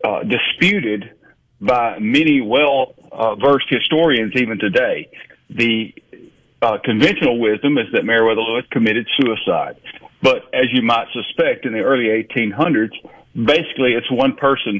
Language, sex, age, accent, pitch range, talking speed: English, male, 50-69, American, 110-145 Hz, 130 wpm